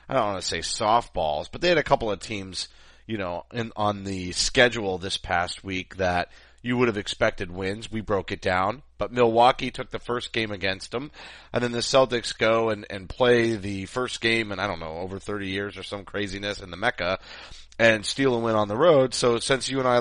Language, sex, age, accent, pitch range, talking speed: English, male, 30-49, American, 100-130 Hz, 230 wpm